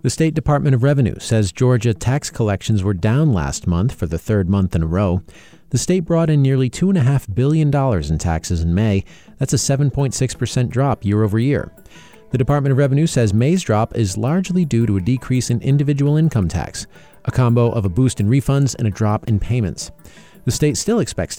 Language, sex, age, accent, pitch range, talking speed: English, male, 40-59, American, 100-135 Hz, 200 wpm